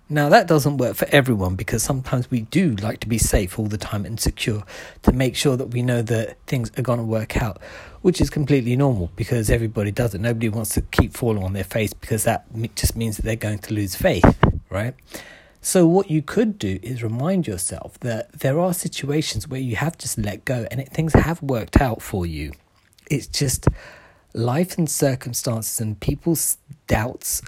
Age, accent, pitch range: 40-59, British, 110-140 Hz